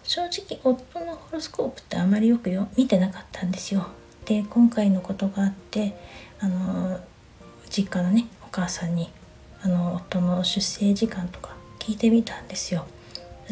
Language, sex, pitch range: Japanese, female, 180-210 Hz